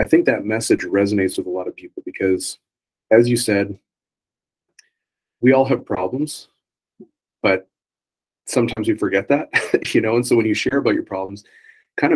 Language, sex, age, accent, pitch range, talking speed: English, male, 30-49, American, 100-130 Hz, 170 wpm